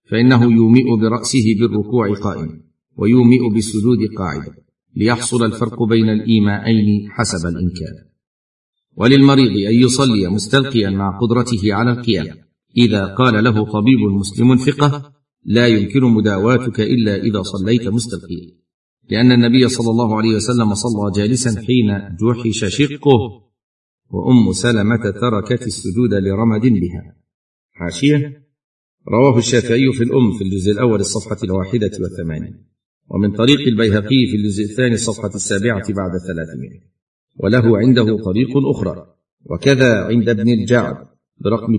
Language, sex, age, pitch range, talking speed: Arabic, male, 50-69, 100-120 Hz, 120 wpm